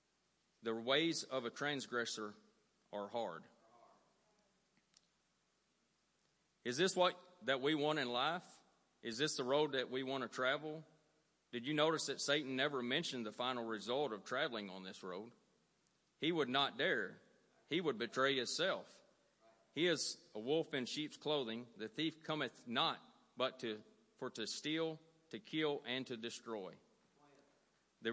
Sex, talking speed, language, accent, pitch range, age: male, 145 wpm, English, American, 120-150 Hz, 40-59